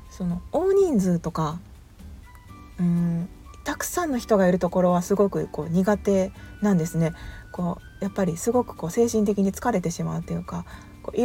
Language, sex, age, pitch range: Japanese, female, 40-59, 165-220 Hz